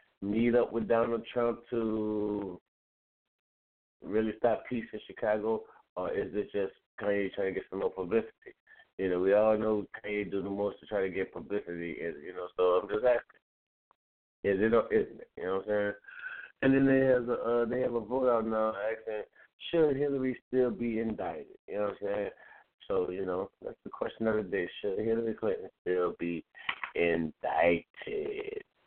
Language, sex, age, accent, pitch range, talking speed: English, male, 30-49, American, 105-145 Hz, 185 wpm